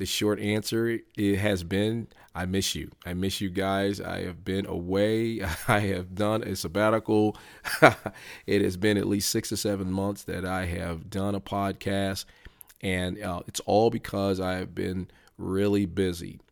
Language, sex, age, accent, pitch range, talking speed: English, male, 40-59, American, 95-105 Hz, 170 wpm